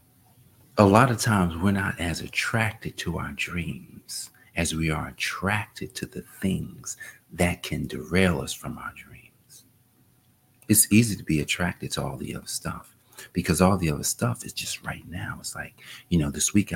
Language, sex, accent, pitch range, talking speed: English, male, American, 85-130 Hz, 180 wpm